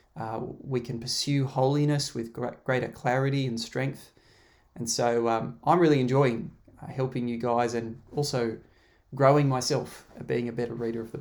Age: 20-39